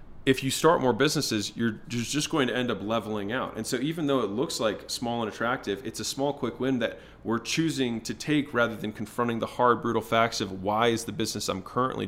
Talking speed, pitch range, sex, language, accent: 235 wpm, 105-120 Hz, male, English, American